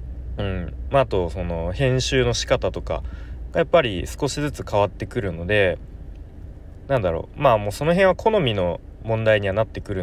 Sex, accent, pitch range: male, native, 85-115 Hz